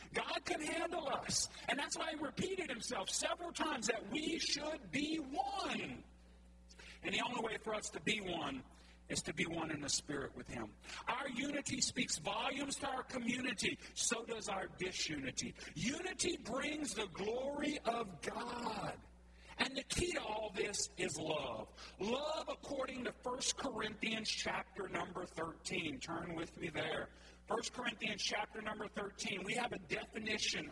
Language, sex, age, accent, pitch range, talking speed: English, male, 50-69, American, 190-245 Hz, 160 wpm